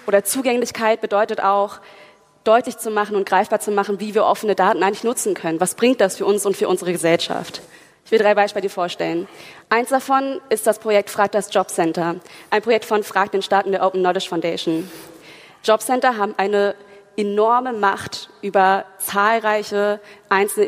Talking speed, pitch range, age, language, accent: 170 wpm, 195-230 Hz, 20-39, German, German